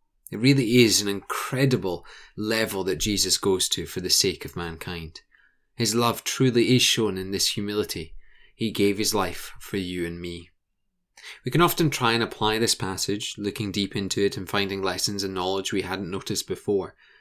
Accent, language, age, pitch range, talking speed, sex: British, English, 20-39, 95-120 Hz, 180 wpm, male